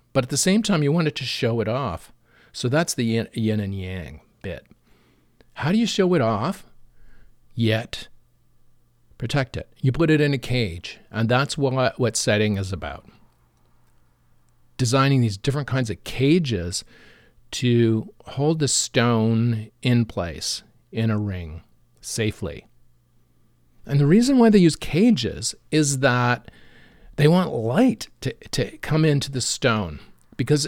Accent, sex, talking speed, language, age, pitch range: American, male, 145 wpm, English, 50-69, 110-145 Hz